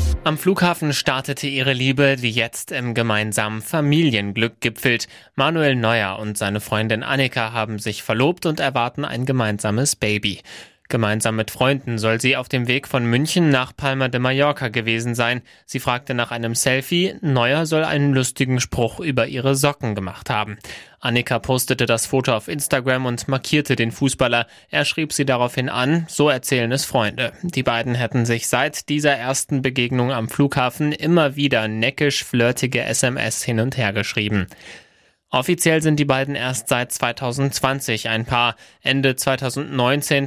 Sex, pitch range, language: male, 115-140 Hz, German